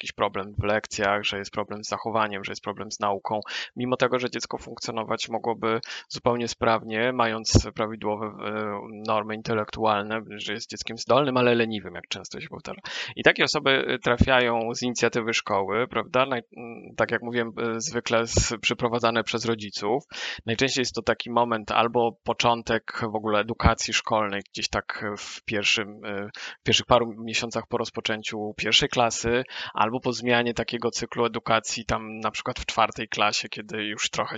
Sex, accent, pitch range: male, native, 110-120 Hz